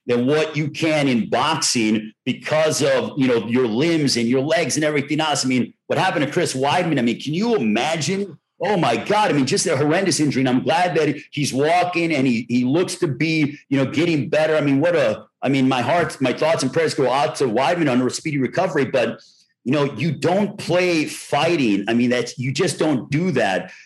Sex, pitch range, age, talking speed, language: male, 140-190 Hz, 50-69, 225 wpm, English